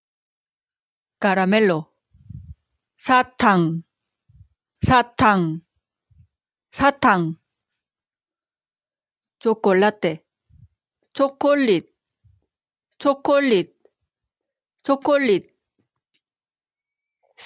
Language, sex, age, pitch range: Korean, female, 40-59, 185-270 Hz